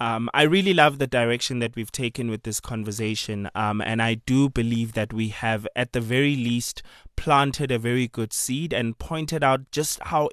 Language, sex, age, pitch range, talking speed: English, male, 20-39, 115-140 Hz, 200 wpm